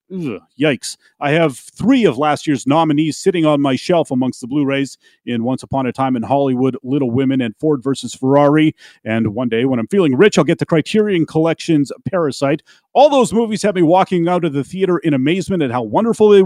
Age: 30-49